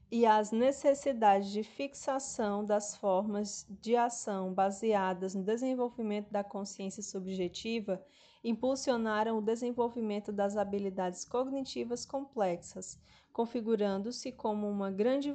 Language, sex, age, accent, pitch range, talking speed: Portuguese, female, 20-39, Brazilian, 205-250 Hz, 100 wpm